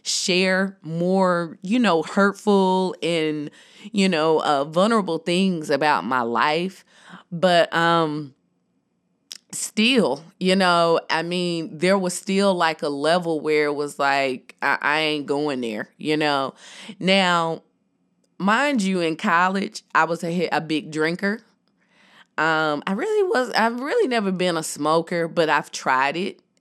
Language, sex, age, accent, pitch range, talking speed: English, female, 20-39, American, 155-195 Hz, 140 wpm